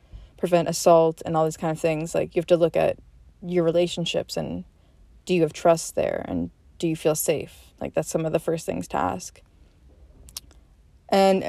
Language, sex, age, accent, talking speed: English, female, 20-39, American, 195 wpm